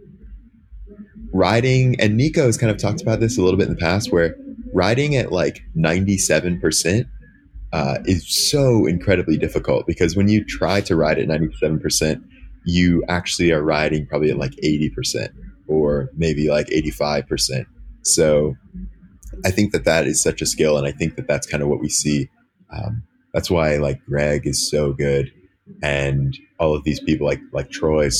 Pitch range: 75-90 Hz